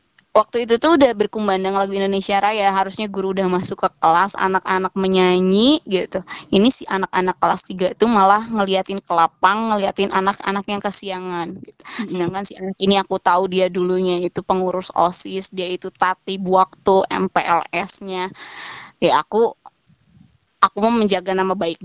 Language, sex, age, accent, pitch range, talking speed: Indonesian, female, 20-39, native, 190-210 Hz, 150 wpm